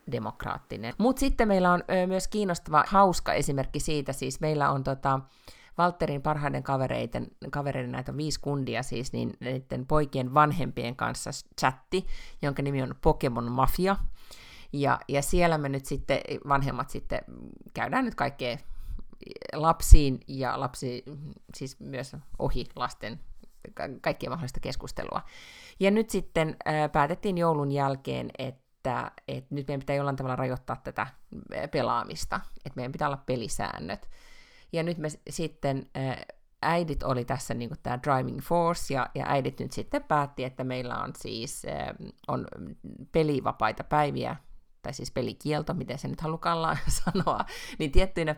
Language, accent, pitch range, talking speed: Finnish, native, 130-160 Hz, 135 wpm